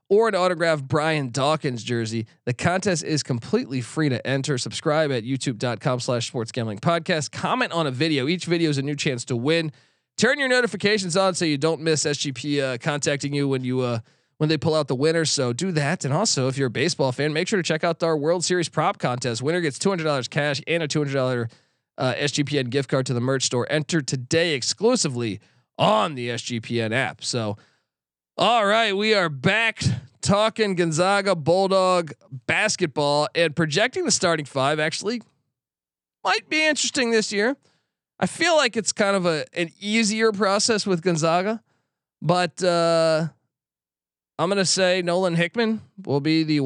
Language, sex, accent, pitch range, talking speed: English, male, American, 135-185 Hz, 185 wpm